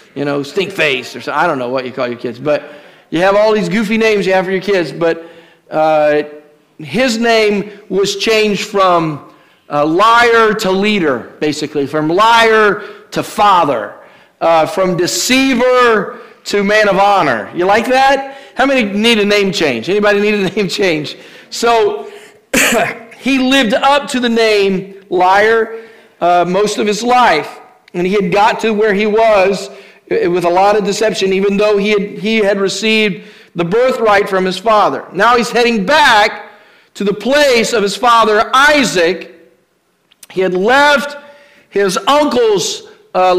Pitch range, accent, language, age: 190-235 Hz, American, English, 50-69